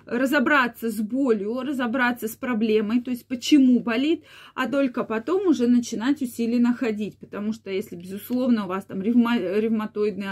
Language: Russian